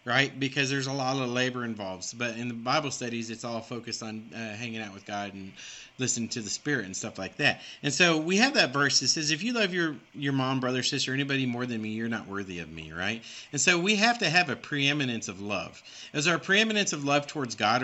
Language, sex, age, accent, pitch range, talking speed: English, male, 40-59, American, 120-170 Hz, 250 wpm